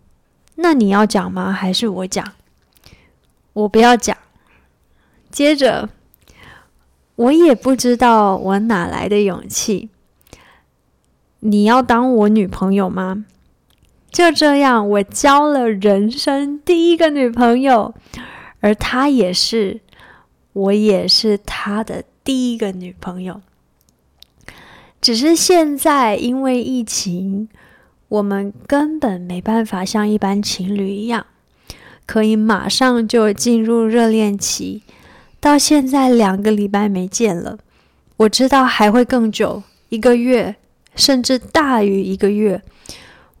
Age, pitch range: 20-39, 200-250 Hz